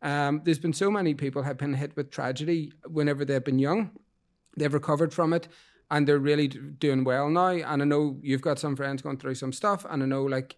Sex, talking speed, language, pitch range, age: male, 225 wpm, English, 140-165 Hz, 30-49